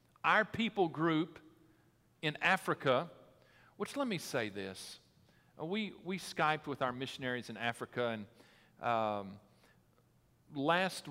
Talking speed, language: 115 wpm, English